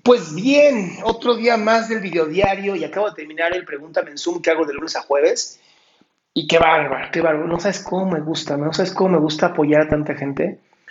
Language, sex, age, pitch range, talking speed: Spanish, male, 30-49, 150-190 Hz, 225 wpm